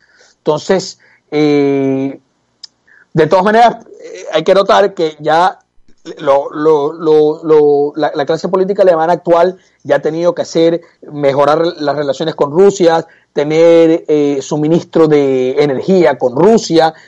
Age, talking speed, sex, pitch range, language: 30-49, 135 wpm, male, 150-185 Hz, Spanish